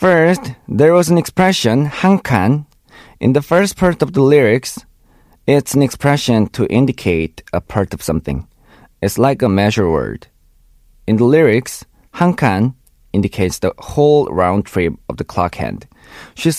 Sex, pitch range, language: male, 95-145 Hz, Korean